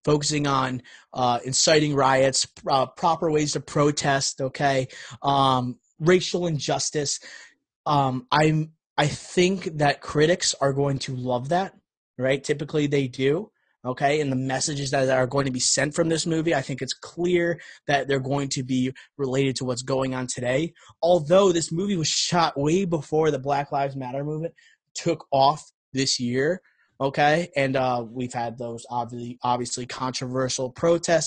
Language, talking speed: English, 155 wpm